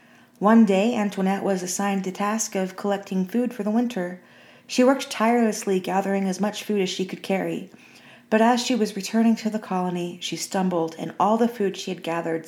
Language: English